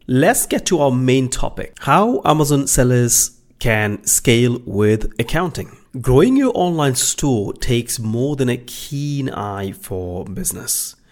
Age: 30-49